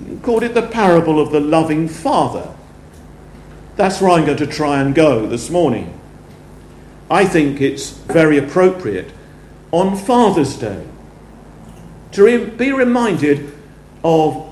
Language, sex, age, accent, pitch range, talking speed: English, male, 50-69, British, 135-180 Hz, 130 wpm